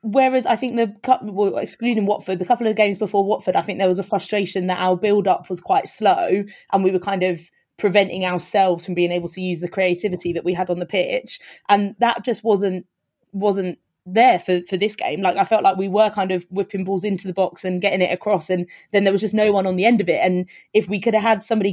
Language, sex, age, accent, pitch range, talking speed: English, female, 20-39, British, 180-205 Hz, 250 wpm